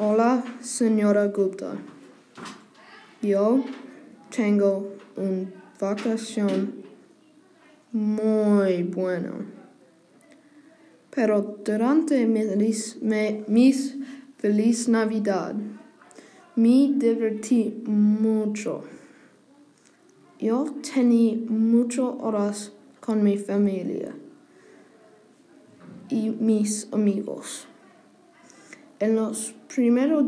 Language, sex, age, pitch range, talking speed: English, female, 20-39, 210-280 Hz, 60 wpm